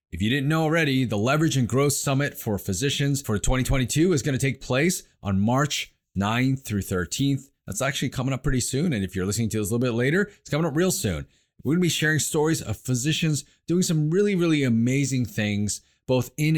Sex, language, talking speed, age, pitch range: male, English, 220 wpm, 30-49, 105-140 Hz